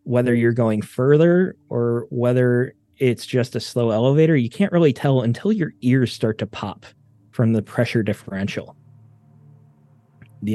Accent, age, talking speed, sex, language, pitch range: American, 20-39, 150 wpm, male, English, 110-130 Hz